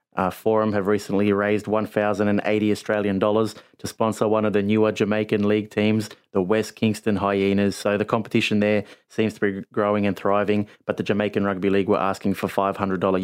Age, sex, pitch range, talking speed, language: 30-49, male, 95-105 Hz, 175 wpm, English